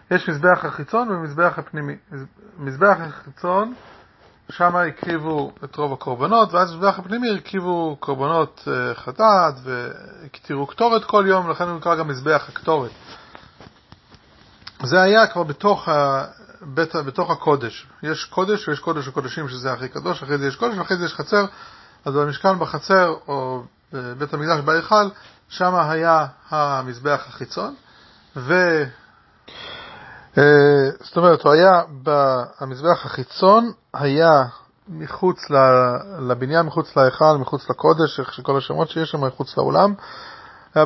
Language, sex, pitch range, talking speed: English, male, 135-180 Hz, 120 wpm